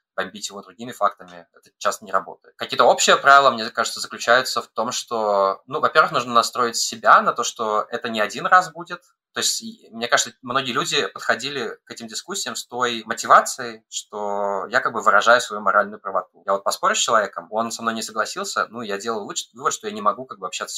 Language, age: Russian, 20-39